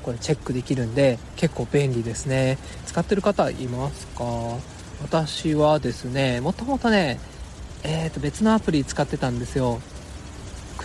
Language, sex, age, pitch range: Japanese, male, 20-39, 125-175 Hz